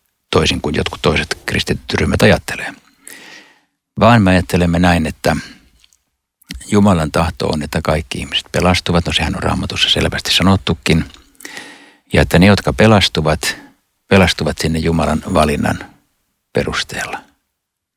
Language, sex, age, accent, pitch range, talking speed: Finnish, male, 60-79, native, 80-95 Hz, 115 wpm